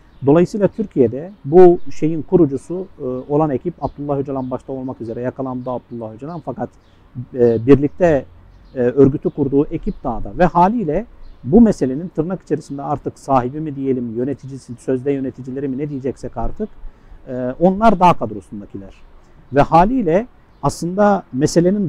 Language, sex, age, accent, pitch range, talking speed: Turkish, male, 50-69, native, 125-175 Hz, 125 wpm